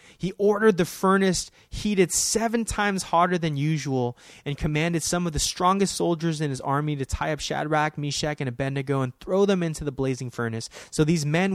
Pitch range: 125-180 Hz